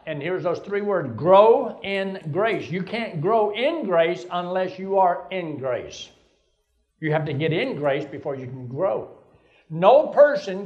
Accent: American